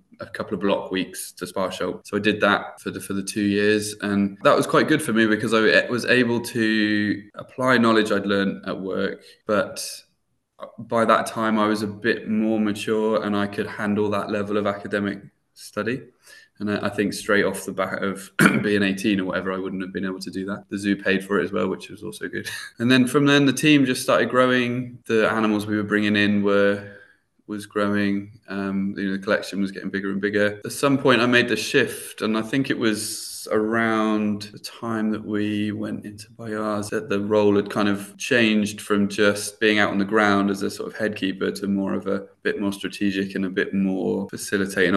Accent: British